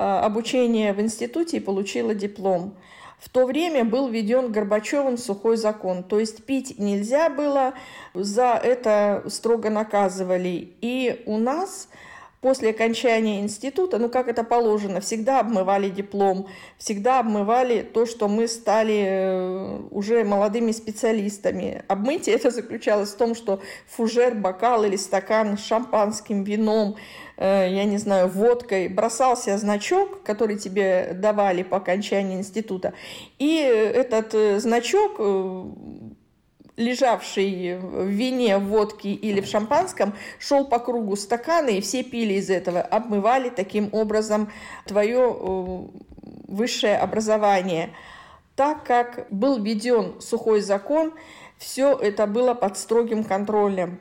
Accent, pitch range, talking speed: native, 200-240 Hz, 120 wpm